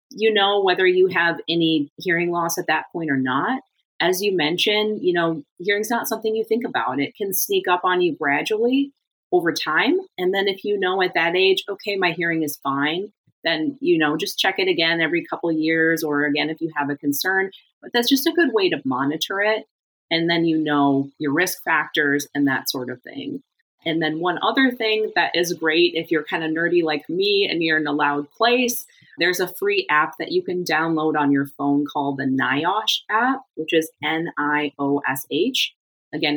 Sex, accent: female, American